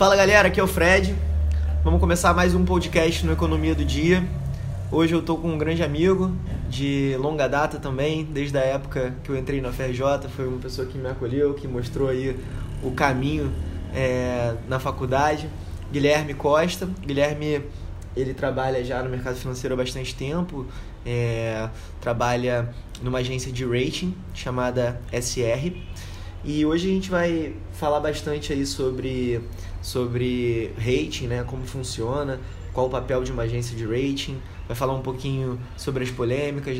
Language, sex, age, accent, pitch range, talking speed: Portuguese, male, 20-39, Brazilian, 115-145 Hz, 155 wpm